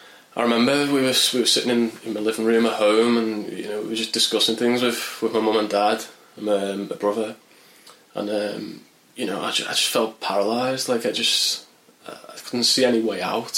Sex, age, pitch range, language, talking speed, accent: male, 20-39, 105-120 Hz, English, 230 wpm, British